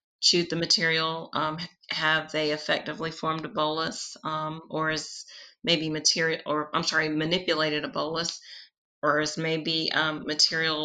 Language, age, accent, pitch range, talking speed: English, 30-49, American, 155-170 Hz, 145 wpm